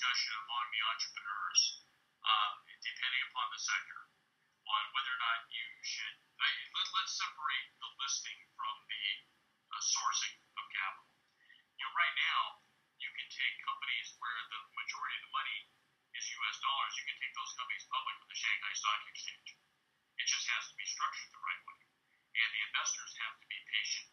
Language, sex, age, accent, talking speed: English, male, 50-69, American, 175 wpm